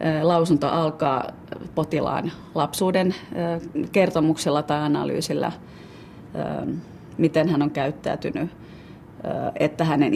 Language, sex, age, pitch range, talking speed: Finnish, female, 30-49, 150-165 Hz, 75 wpm